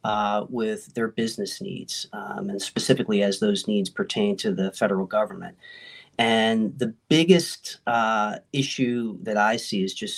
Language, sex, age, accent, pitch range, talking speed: English, male, 40-59, American, 110-135 Hz, 155 wpm